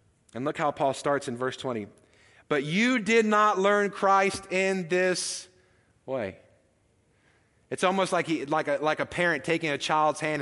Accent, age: American, 30-49